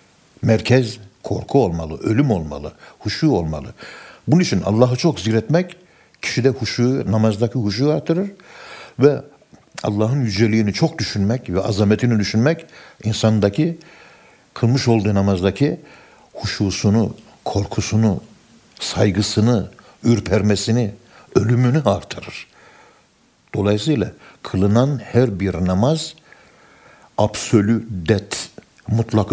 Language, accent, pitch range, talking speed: Turkish, native, 100-125 Hz, 90 wpm